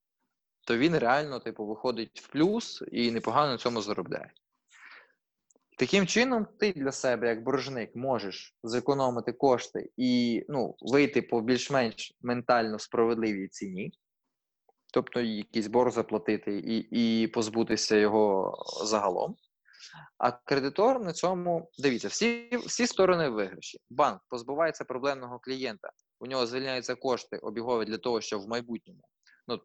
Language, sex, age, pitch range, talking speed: Ukrainian, male, 20-39, 110-140 Hz, 130 wpm